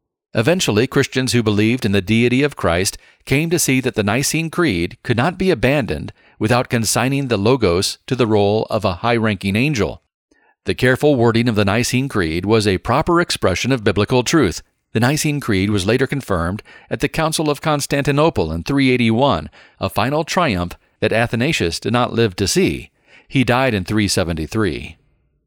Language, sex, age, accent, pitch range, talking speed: English, male, 40-59, American, 100-130 Hz, 170 wpm